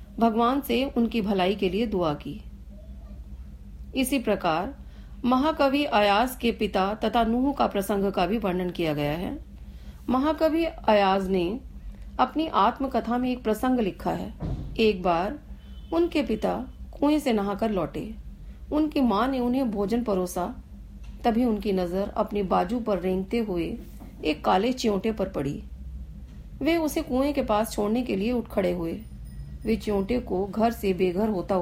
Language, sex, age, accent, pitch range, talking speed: Hindi, female, 40-59, native, 185-250 Hz, 150 wpm